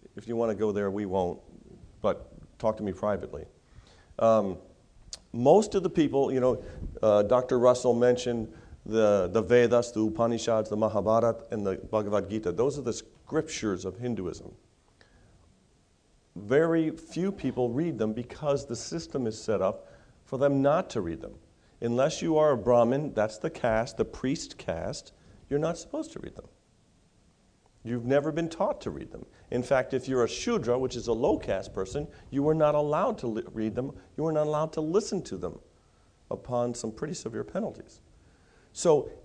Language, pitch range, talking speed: English, 110-140 Hz, 175 wpm